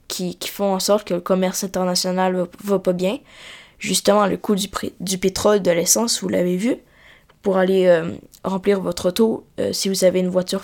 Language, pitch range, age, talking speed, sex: French, 185-215 Hz, 20-39, 210 wpm, female